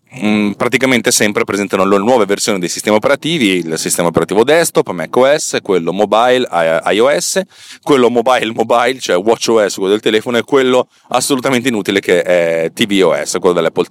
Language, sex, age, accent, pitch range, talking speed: Italian, male, 30-49, native, 105-150 Hz, 145 wpm